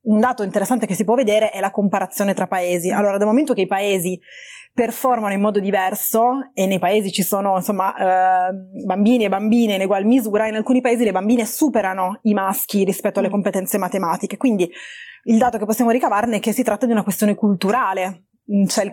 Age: 20-39